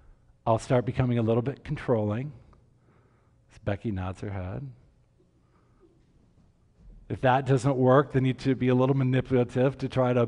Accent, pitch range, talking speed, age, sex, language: American, 115-140 Hz, 145 wpm, 50-69, male, English